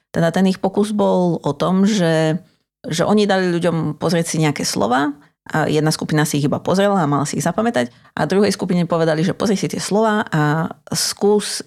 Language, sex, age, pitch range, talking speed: Slovak, female, 30-49, 150-190 Hz, 200 wpm